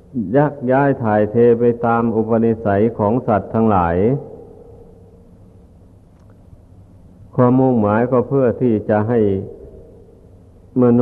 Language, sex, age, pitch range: Thai, male, 60-79, 95-120 Hz